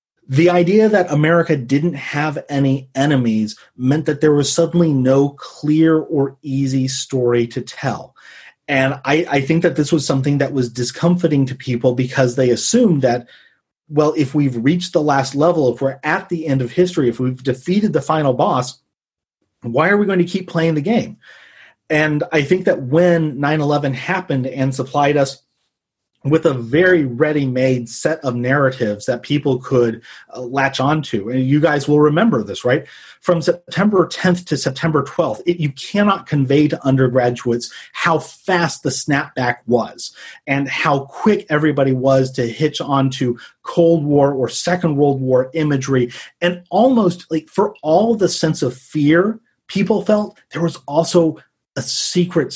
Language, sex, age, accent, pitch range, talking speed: English, male, 30-49, American, 130-165 Hz, 165 wpm